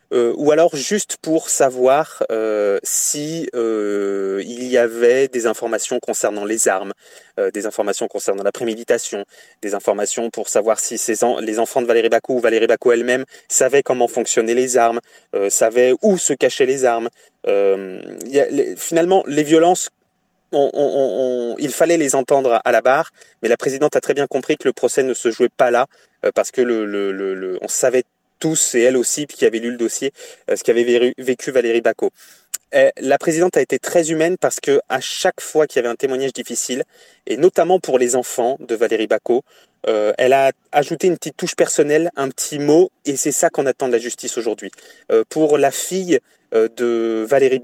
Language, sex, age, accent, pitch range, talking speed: French, male, 30-49, French, 120-185 Hz, 195 wpm